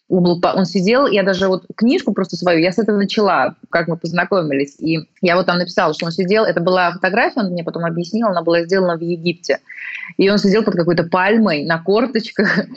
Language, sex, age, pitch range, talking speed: Russian, female, 20-39, 165-215 Hz, 200 wpm